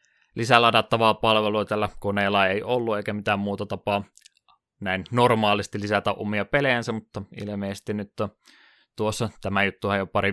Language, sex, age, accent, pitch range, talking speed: Finnish, male, 20-39, native, 100-110 Hz, 140 wpm